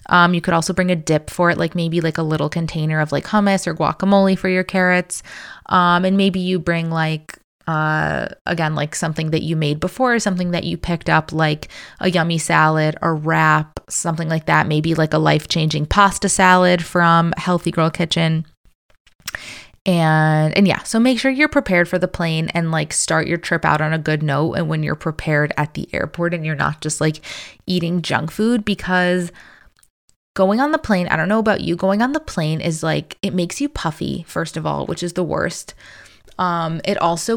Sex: female